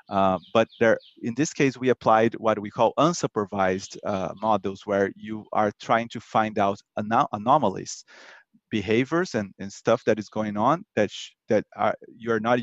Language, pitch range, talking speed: English, 110-135 Hz, 180 wpm